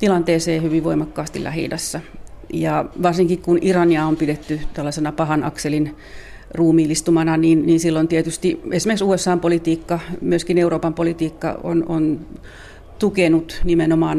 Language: Finnish